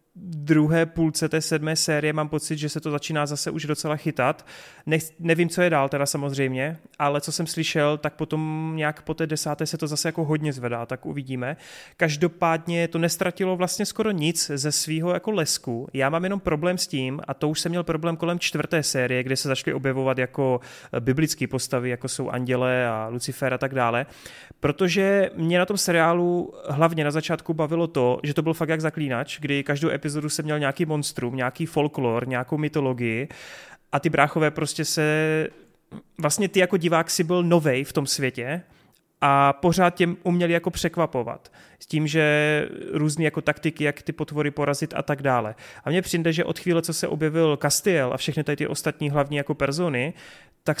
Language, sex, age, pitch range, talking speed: Czech, male, 30-49, 145-165 Hz, 190 wpm